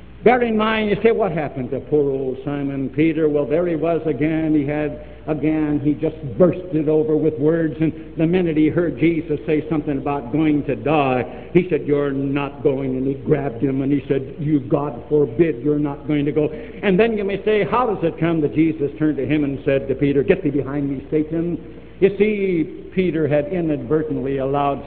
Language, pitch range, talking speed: English, 135-165 Hz, 210 wpm